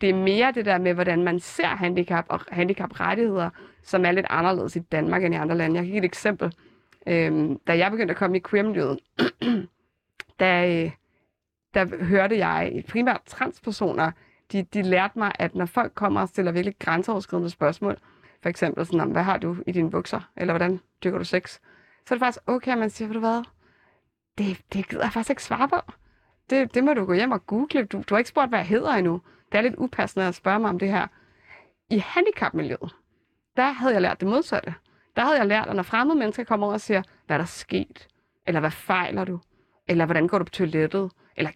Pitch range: 175-225 Hz